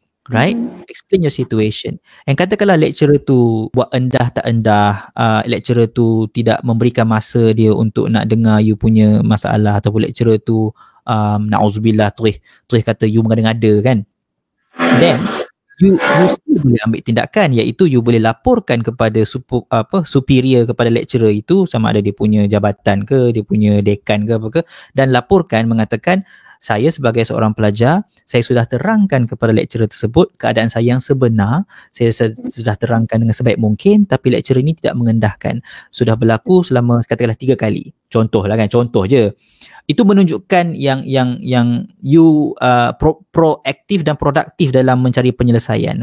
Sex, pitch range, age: male, 110-145 Hz, 20-39